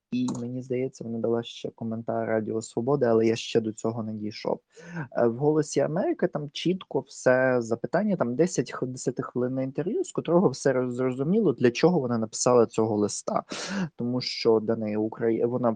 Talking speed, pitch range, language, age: 165 wpm, 110-140 Hz, Ukrainian, 20-39